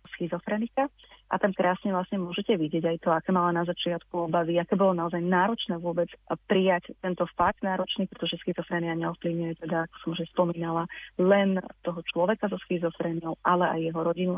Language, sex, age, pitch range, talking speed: Slovak, female, 30-49, 170-190 Hz, 170 wpm